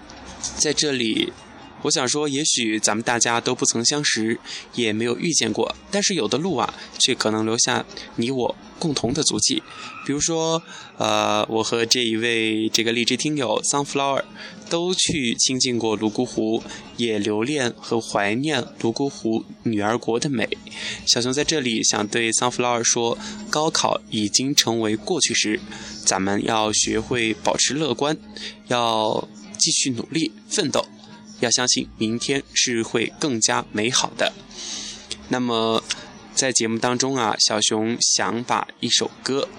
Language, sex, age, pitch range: Chinese, male, 10-29, 110-145 Hz